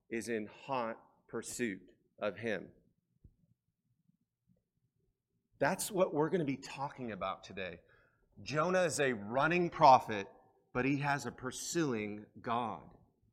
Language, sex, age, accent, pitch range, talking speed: English, male, 40-59, American, 110-140 Hz, 115 wpm